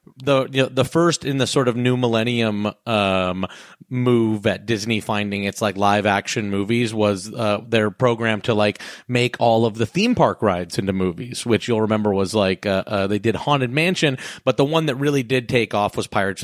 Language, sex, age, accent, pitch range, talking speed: English, male, 30-49, American, 105-140 Hz, 210 wpm